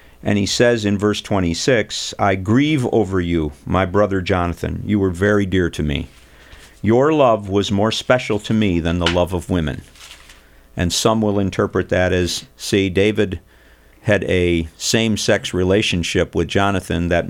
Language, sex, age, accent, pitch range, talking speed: English, male, 50-69, American, 85-105 Hz, 160 wpm